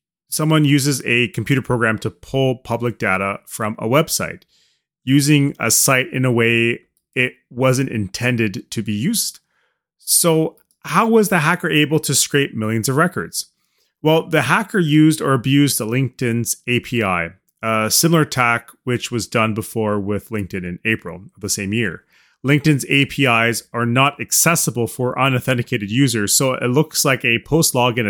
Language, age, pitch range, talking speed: English, 30-49, 115-145 Hz, 155 wpm